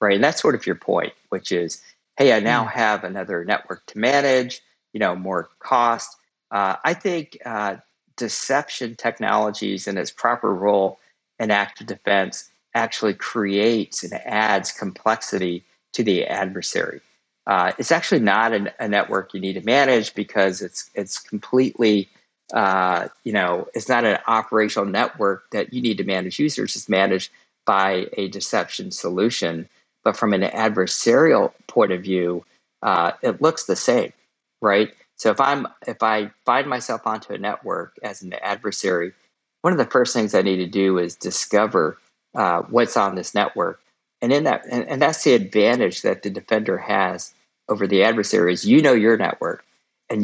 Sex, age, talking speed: male, 50-69, 165 wpm